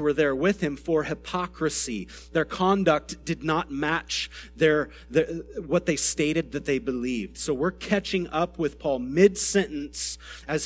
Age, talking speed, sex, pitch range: 30-49, 150 wpm, male, 125-175 Hz